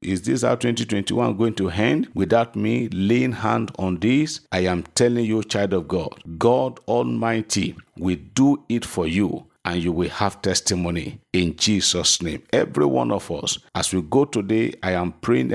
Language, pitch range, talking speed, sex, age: English, 95-115 Hz, 180 wpm, male, 50-69